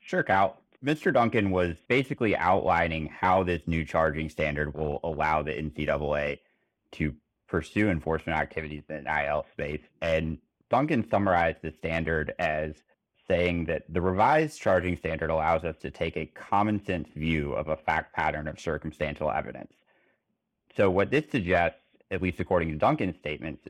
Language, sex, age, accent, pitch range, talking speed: English, male, 30-49, American, 75-90 Hz, 150 wpm